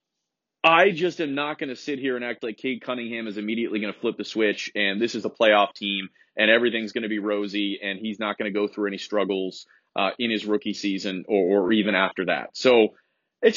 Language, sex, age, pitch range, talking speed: English, male, 30-49, 105-145 Hz, 235 wpm